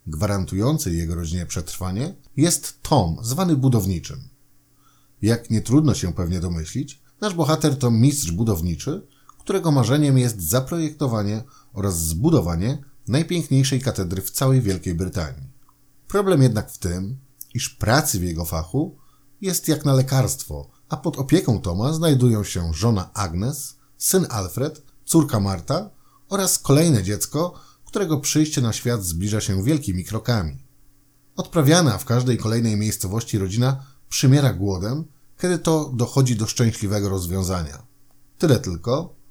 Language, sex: Polish, male